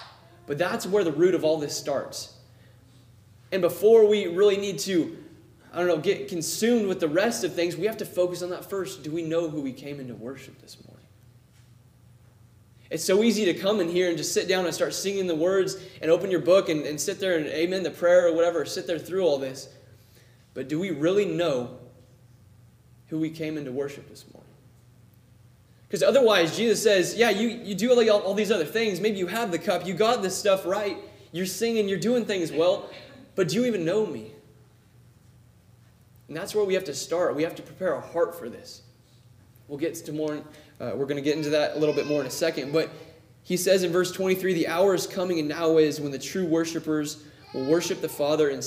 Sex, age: male, 20-39